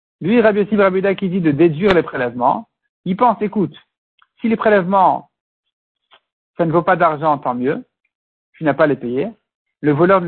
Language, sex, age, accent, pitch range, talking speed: French, male, 60-79, French, 165-220 Hz, 180 wpm